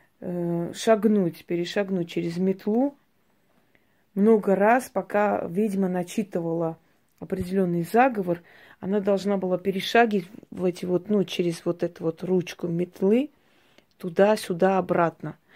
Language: Russian